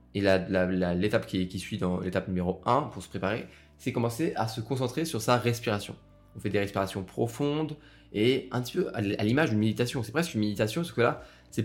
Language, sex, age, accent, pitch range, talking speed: French, male, 20-39, French, 100-125 Hz, 225 wpm